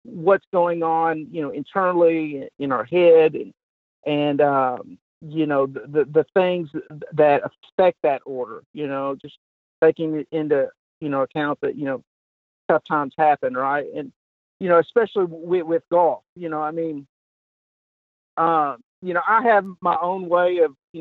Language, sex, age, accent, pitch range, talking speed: English, male, 50-69, American, 145-170 Hz, 170 wpm